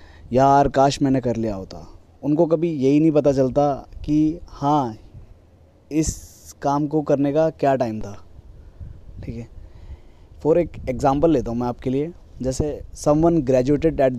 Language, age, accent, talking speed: Hindi, 20-39, native, 150 wpm